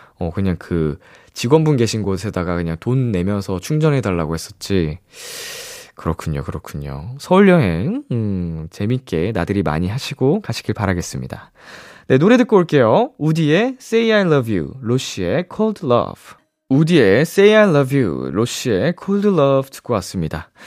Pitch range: 95-155 Hz